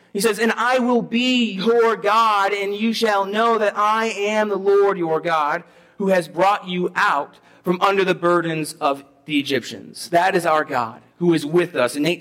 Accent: American